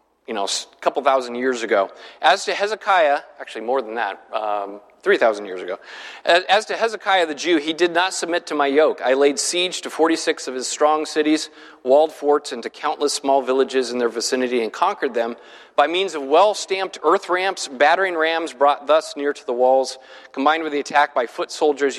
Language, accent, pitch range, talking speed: English, American, 135-180 Hz, 195 wpm